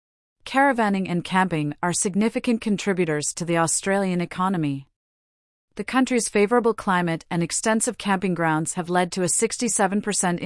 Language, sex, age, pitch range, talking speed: English, female, 40-59, 165-205 Hz, 130 wpm